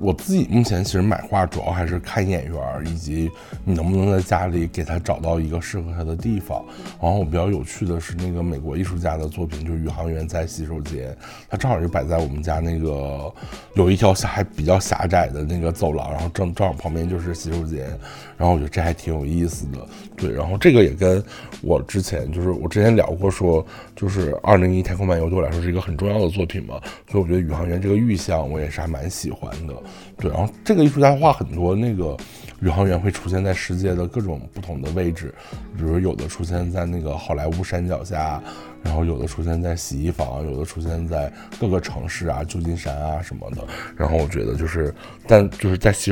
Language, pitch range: Chinese, 80-95 Hz